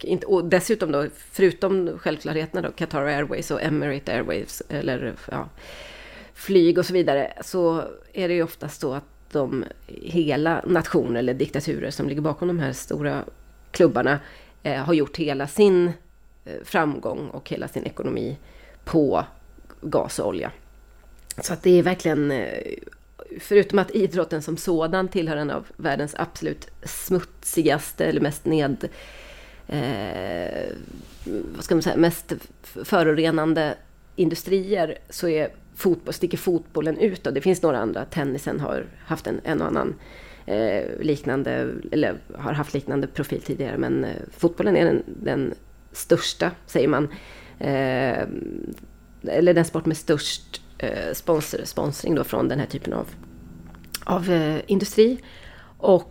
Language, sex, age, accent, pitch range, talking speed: Swedish, female, 30-49, native, 145-180 Hz, 140 wpm